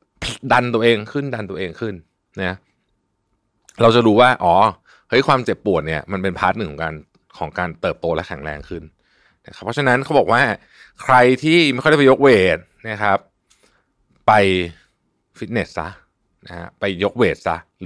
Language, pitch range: Thai, 90-125 Hz